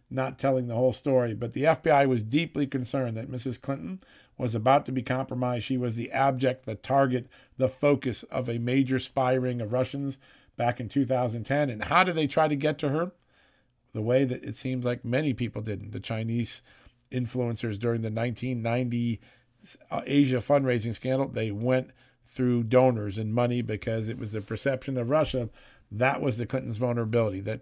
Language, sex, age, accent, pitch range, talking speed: English, male, 50-69, American, 120-135 Hz, 185 wpm